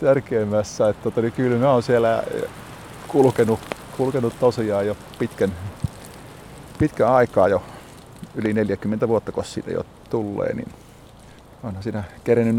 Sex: male